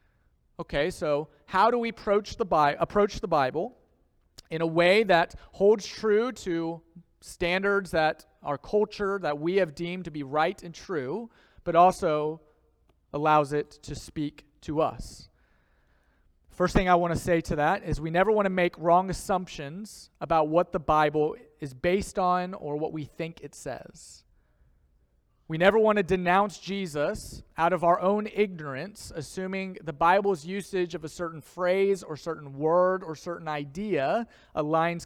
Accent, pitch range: American, 155-195 Hz